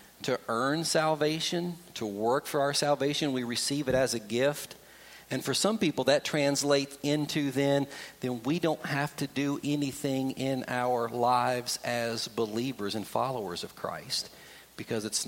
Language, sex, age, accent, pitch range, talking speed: English, male, 40-59, American, 135-205 Hz, 155 wpm